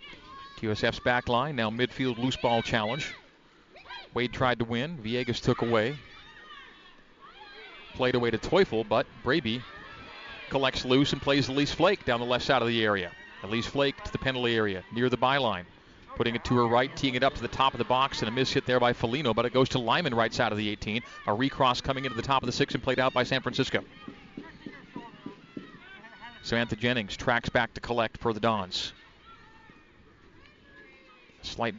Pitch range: 115-130 Hz